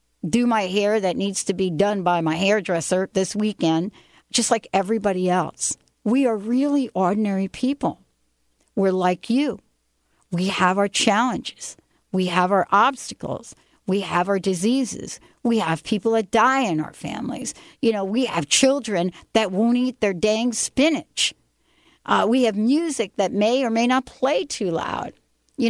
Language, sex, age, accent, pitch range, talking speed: English, female, 60-79, American, 175-230 Hz, 160 wpm